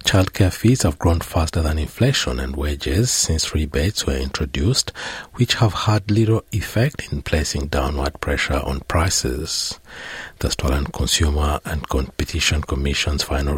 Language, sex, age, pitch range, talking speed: English, male, 60-79, 70-90 Hz, 135 wpm